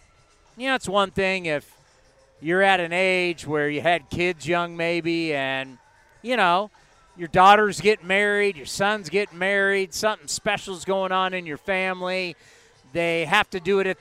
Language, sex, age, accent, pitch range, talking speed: English, male, 40-59, American, 165-205 Hz, 175 wpm